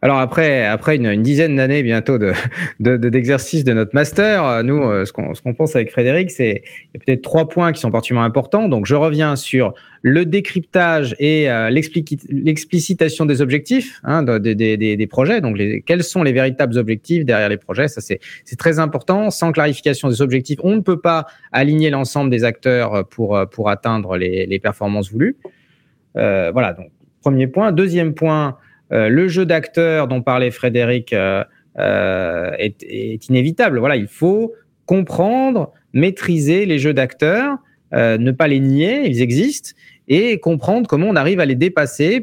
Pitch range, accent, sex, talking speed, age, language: 125-165 Hz, French, male, 185 wpm, 30-49, French